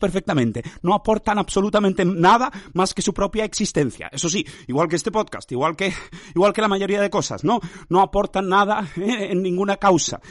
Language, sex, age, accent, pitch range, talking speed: Spanish, male, 30-49, Spanish, 175-205 Hz, 185 wpm